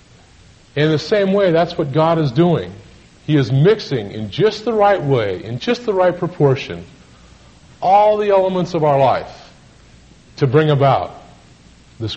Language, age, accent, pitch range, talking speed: English, 40-59, American, 110-155 Hz, 160 wpm